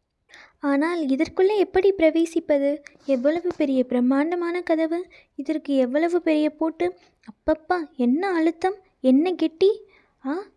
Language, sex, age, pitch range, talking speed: Tamil, female, 20-39, 280-335 Hz, 100 wpm